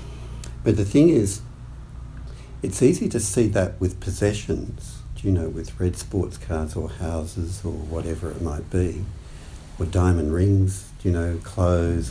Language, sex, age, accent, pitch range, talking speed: English, male, 60-79, Australian, 80-95 Hz, 160 wpm